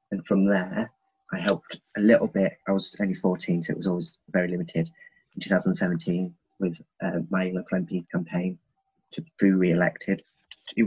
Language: English